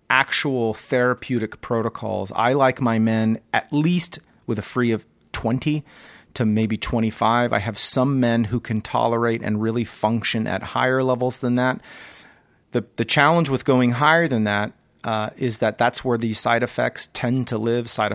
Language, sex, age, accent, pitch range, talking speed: English, male, 30-49, American, 105-130 Hz, 170 wpm